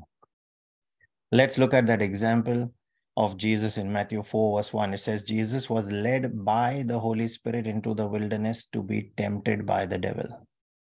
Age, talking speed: 30-49, 165 wpm